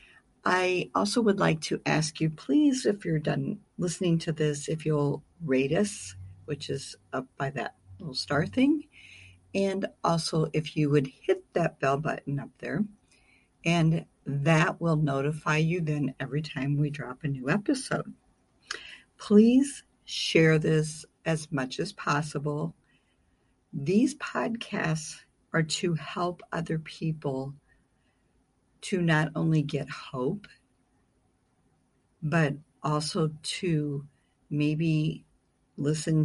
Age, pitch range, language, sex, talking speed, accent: 50-69, 140-165 Hz, English, female, 120 wpm, American